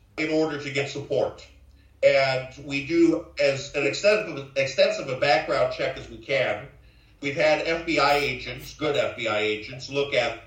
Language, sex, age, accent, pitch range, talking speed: English, male, 50-69, American, 130-170 Hz, 155 wpm